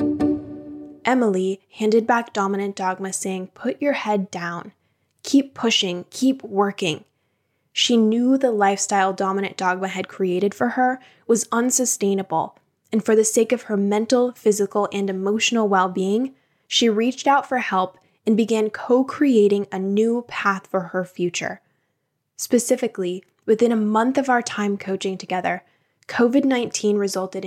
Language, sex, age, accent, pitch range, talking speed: English, female, 10-29, American, 190-240 Hz, 135 wpm